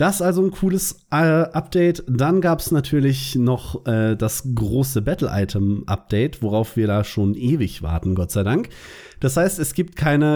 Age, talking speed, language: 40-59, 175 wpm, German